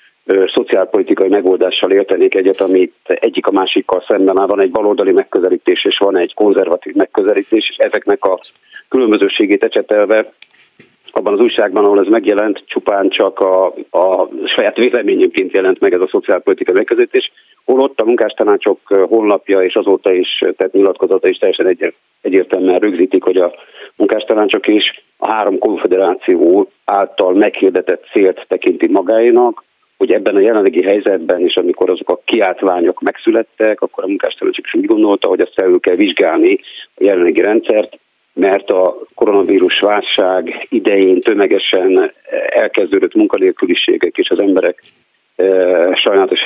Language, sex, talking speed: Hungarian, male, 135 wpm